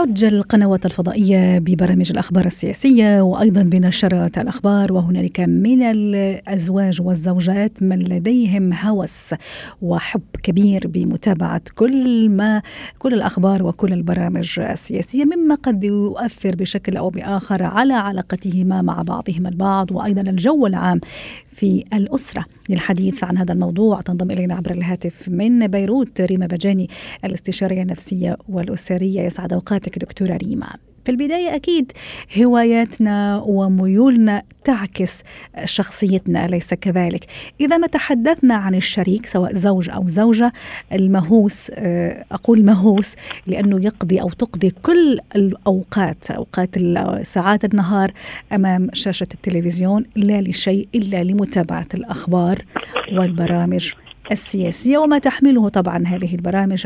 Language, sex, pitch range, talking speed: Arabic, female, 180-215 Hz, 110 wpm